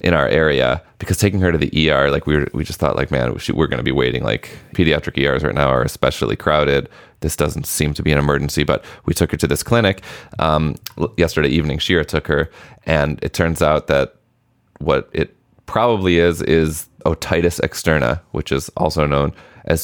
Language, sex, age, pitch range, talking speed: English, male, 30-49, 75-90 Hz, 205 wpm